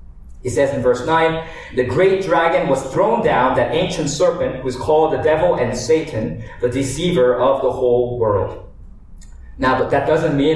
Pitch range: 100-130 Hz